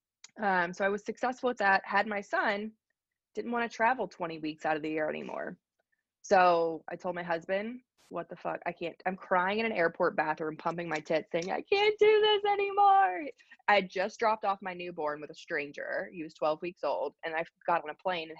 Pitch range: 160-220 Hz